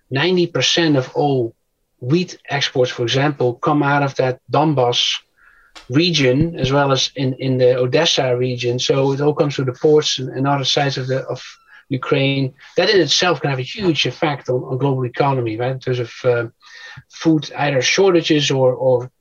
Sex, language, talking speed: male, English, 180 wpm